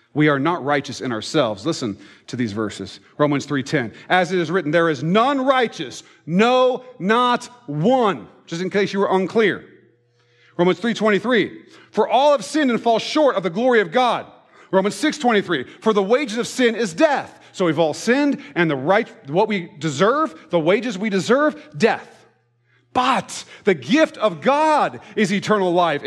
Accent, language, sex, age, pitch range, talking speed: American, English, male, 40-59, 165-250 Hz, 175 wpm